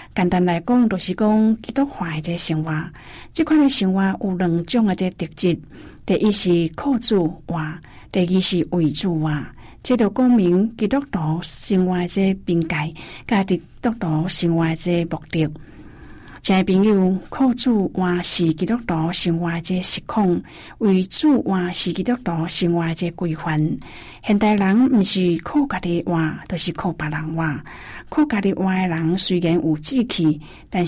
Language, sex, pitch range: Chinese, female, 165-210 Hz